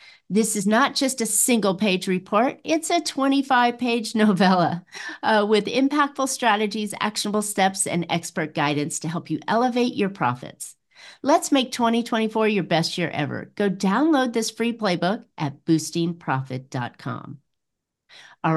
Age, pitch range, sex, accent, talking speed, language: 40-59, 175-250 Hz, female, American, 135 wpm, English